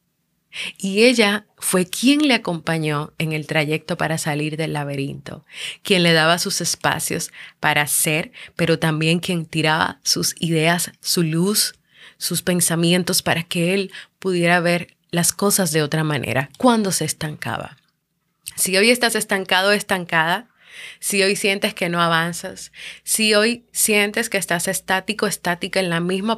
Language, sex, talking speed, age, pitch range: Spanish, female, 150 wpm, 30-49, 160-190 Hz